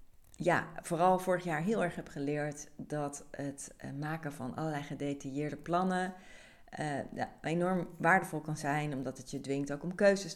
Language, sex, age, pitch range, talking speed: Dutch, female, 40-59, 135-160 Hz, 160 wpm